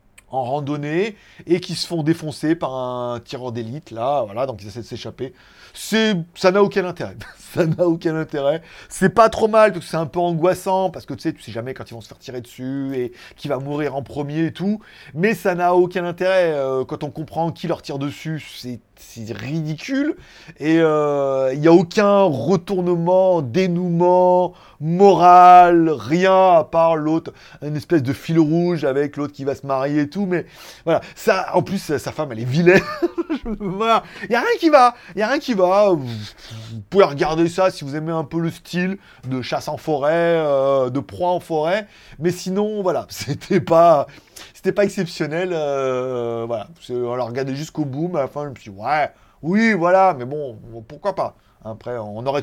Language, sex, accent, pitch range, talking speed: French, male, French, 140-190 Hz, 205 wpm